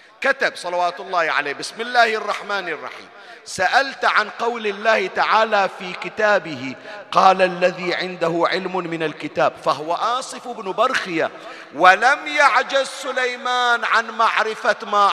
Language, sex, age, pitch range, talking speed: Arabic, male, 40-59, 160-235 Hz, 125 wpm